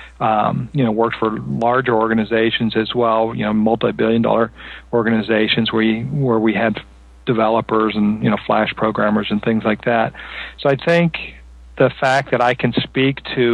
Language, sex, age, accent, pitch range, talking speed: English, male, 40-59, American, 115-125 Hz, 175 wpm